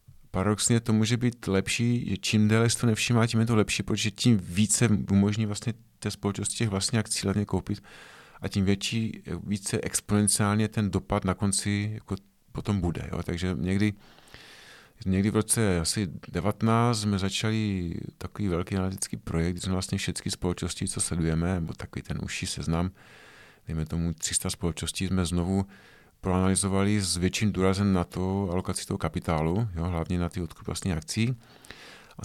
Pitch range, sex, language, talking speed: 90-110 Hz, male, Czech, 160 wpm